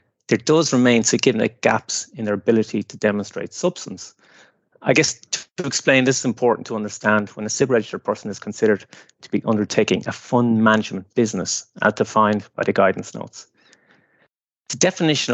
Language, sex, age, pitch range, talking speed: English, male, 30-49, 105-125 Hz, 165 wpm